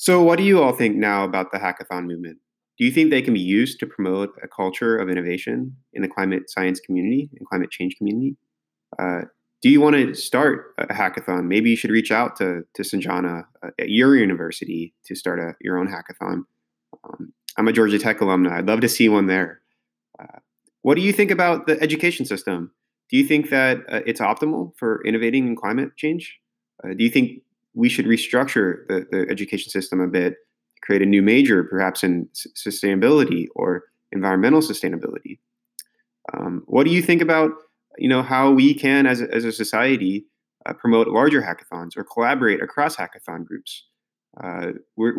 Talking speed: 190 wpm